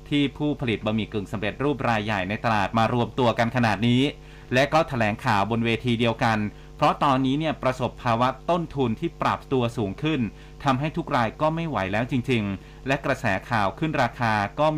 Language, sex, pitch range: Thai, male, 115-145 Hz